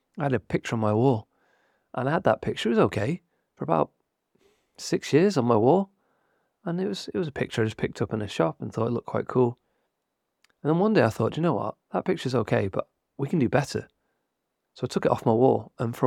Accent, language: British, English